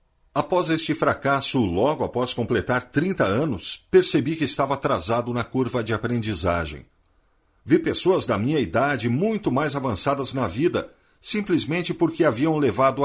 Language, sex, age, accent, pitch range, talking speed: Portuguese, male, 50-69, Brazilian, 115-155 Hz, 140 wpm